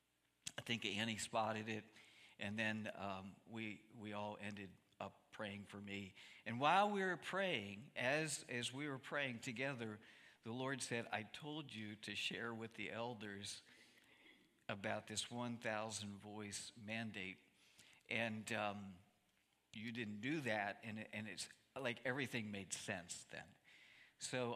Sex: male